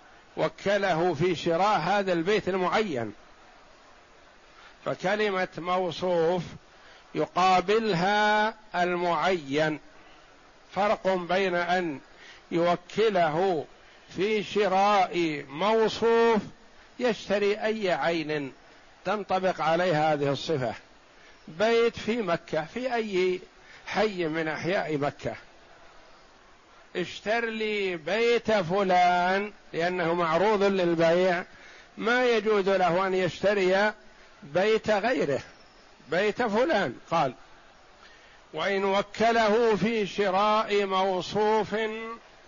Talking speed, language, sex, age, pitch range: 80 wpm, Arabic, male, 60-79, 170-210 Hz